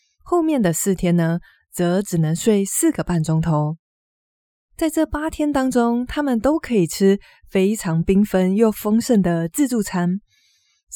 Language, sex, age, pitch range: Chinese, female, 20-39, 175-260 Hz